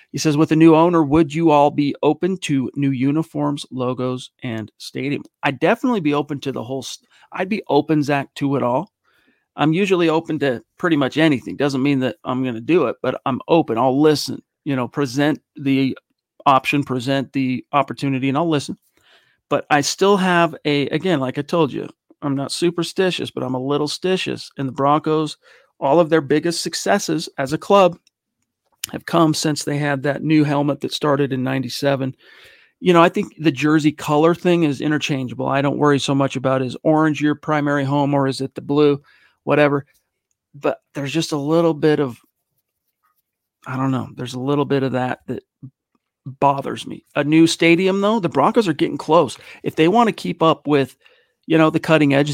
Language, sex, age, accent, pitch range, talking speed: English, male, 40-59, American, 135-160 Hz, 195 wpm